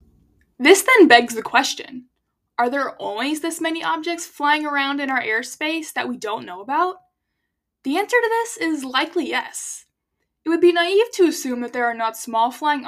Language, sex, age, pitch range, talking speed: English, female, 10-29, 225-335 Hz, 185 wpm